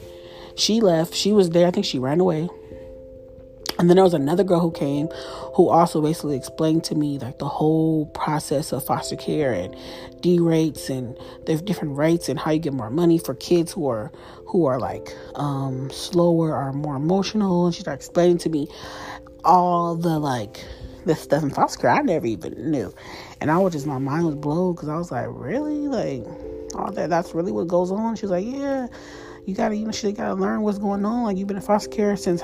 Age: 30-49